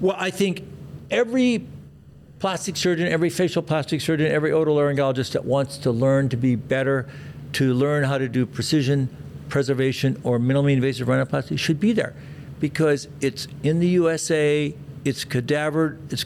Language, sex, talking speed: English, male, 150 wpm